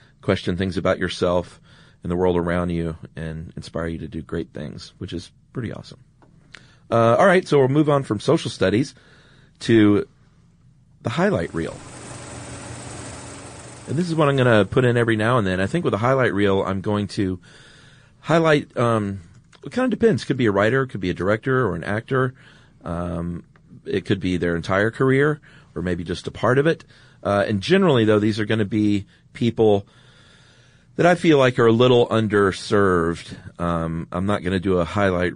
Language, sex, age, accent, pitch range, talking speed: English, male, 40-59, American, 90-130 Hz, 195 wpm